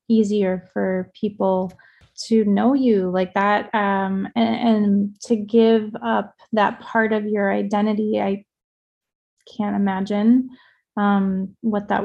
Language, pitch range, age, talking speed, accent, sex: English, 200-225 Hz, 20-39, 125 wpm, American, female